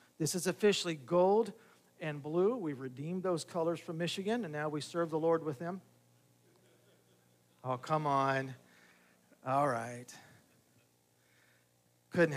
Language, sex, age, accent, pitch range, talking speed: English, male, 50-69, American, 135-175 Hz, 125 wpm